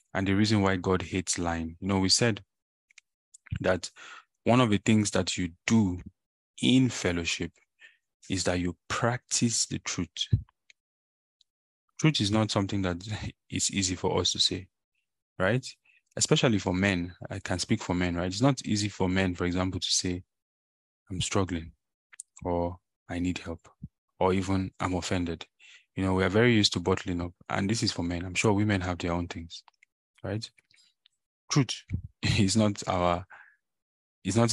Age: 20-39